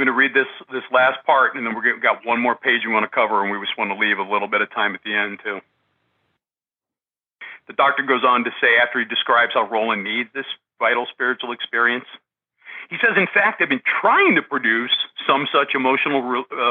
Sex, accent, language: male, American, English